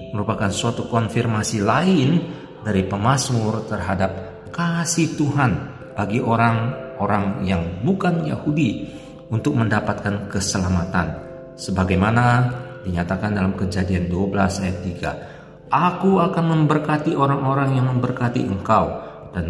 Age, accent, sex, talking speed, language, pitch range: 50-69, native, male, 100 wpm, Indonesian, 100-150 Hz